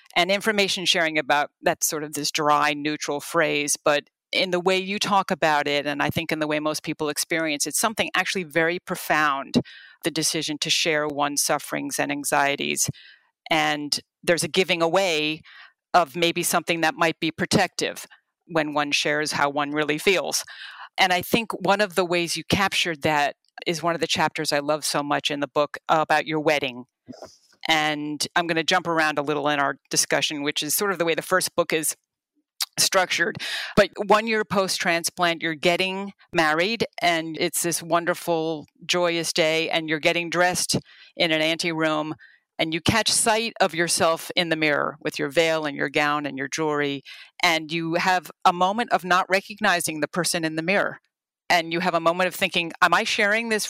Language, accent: English, American